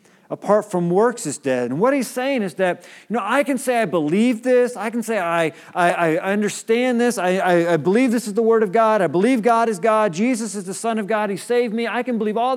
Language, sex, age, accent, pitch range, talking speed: English, male, 40-59, American, 165-230 Hz, 265 wpm